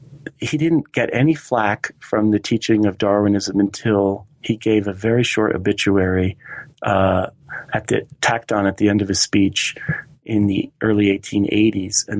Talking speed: 150 wpm